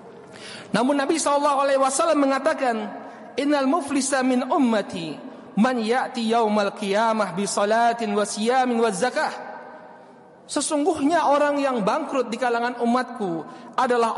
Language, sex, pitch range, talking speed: Indonesian, male, 215-265 Hz, 105 wpm